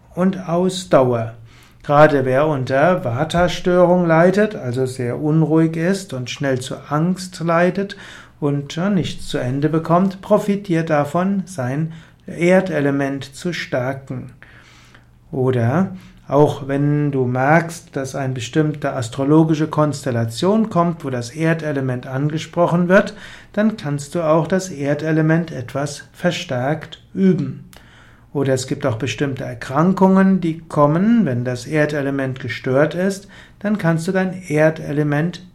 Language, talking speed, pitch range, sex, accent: German, 120 wpm, 135-175 Hz, male, German